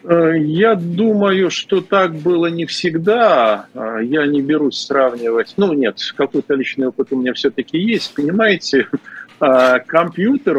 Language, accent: Russian, native